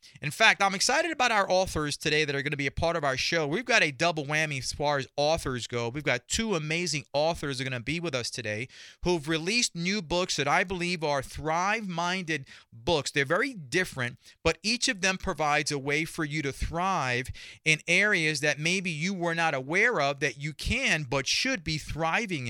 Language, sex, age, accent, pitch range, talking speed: English, male, 30-49, American, 135-180 Hz, 215 wpm